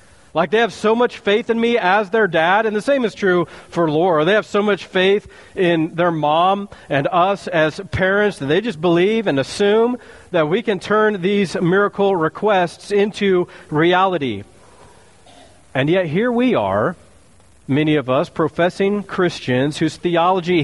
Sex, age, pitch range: male, 40-59, 145-190 Hz